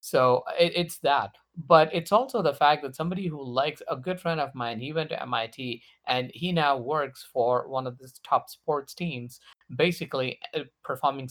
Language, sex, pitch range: English, male, 125-165 Hz